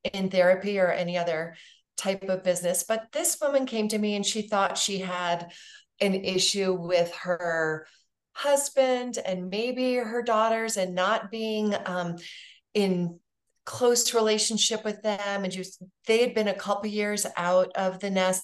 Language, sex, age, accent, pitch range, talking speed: English, female, 30-49, American, 180-220 Hz, 165 wpm